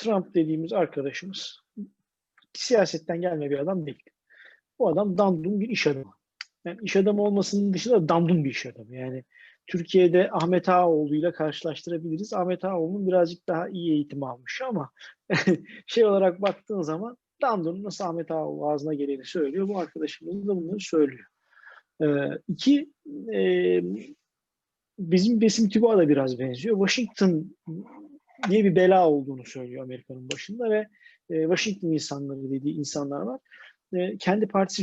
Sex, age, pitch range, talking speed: male, 40-59, 145-200 Hz, 140 wpm